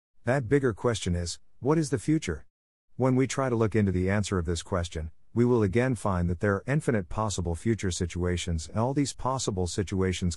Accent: American